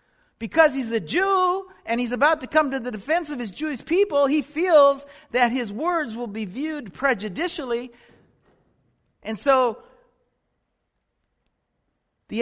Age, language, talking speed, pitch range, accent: 60-79, English, 135 wpm, 215-290 Hz, American